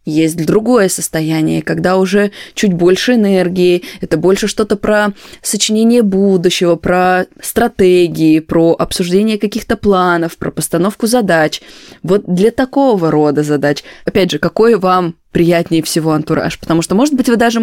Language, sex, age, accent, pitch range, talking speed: Russian, female, 20-39, native, 165-215 Hz, 140 wpm